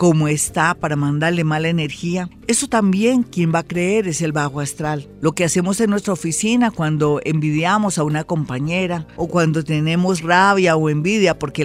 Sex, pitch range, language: female, 155-200 Hz, Spanish